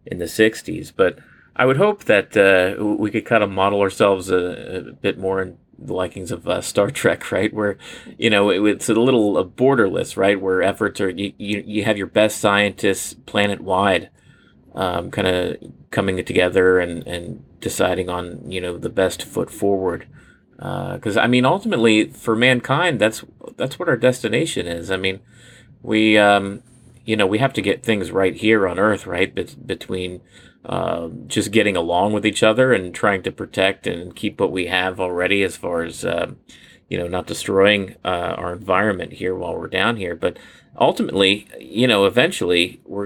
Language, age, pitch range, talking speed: English, 30-49, 95-110 Hz, 185 wpm